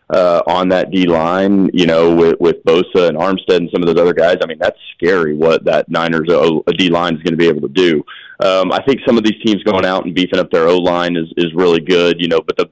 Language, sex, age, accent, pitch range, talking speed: English, male, 30-49, American, 85-95 Hz, 255 wpm